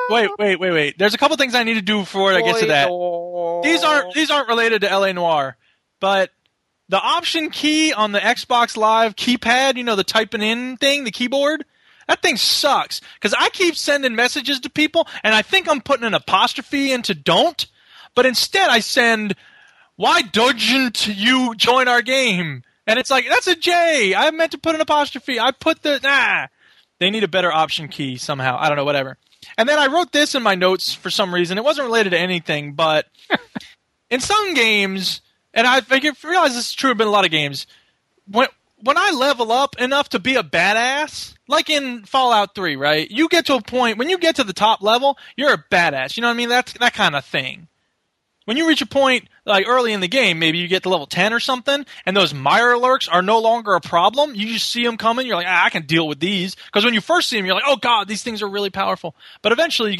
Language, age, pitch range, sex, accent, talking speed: English, 20-39, 190-280 Hz, male, American, 230 wpm